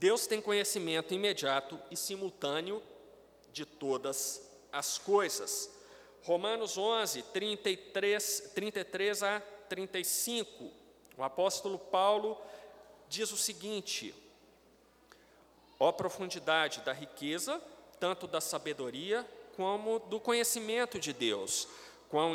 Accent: Brazilian